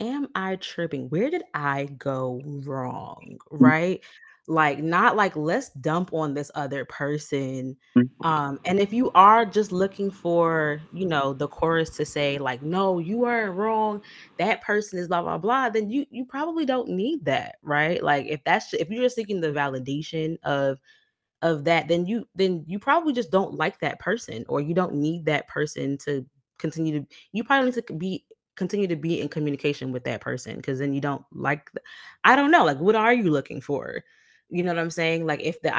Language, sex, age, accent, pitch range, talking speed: English, female, 20-39, American, 145-210 Hz, 195 wpm